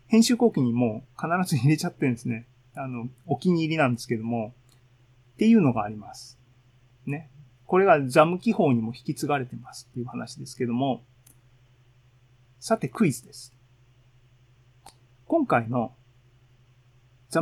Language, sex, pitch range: Japanese, male, 125-150 Hz